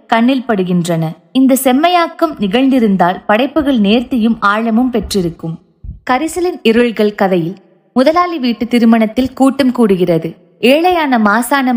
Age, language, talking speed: 20-39, Tamil, 95 wpm